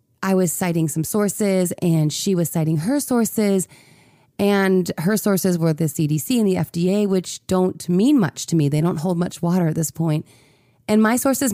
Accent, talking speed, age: American, 190 wpm, 30-49